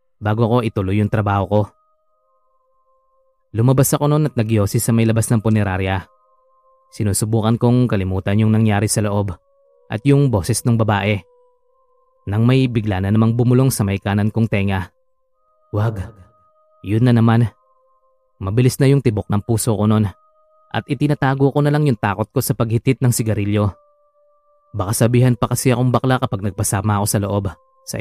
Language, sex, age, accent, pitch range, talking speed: Filipino, male, 20-39, native, 105-170 Hz, 160 wpm